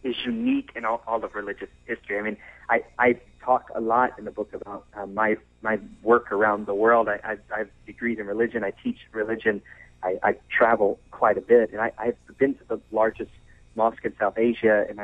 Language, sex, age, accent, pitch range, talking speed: English, male, 30-49, American, 105-145 Hz, 210 wpm